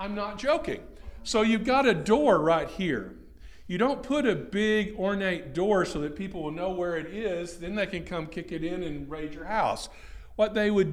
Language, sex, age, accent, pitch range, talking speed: English, male, 50-69, American, 155-200 Hz, 215 wpm